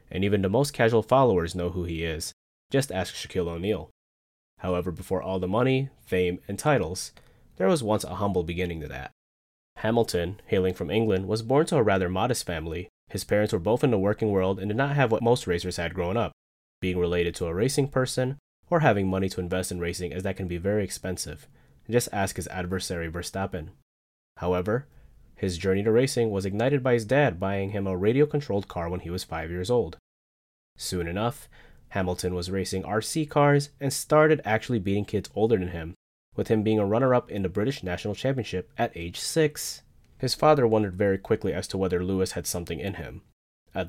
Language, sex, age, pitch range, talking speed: English, male, 20-39, 90-115 Hz, 200 wpm